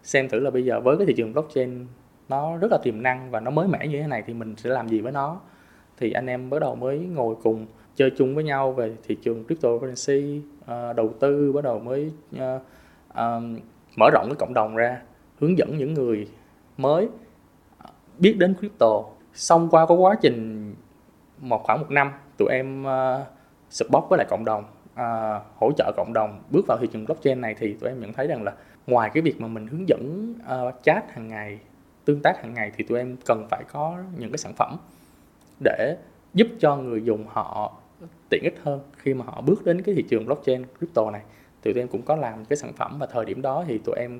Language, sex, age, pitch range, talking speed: Vietnamese, male, 20-39, 115-150 Hz, 215 wpm